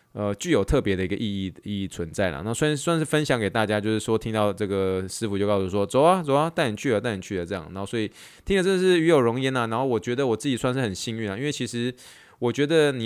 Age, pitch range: 20-39, 95-120 Hz